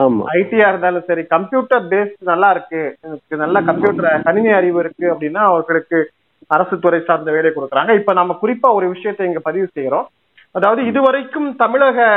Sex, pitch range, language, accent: male, 165-210 Hz, Tamil, native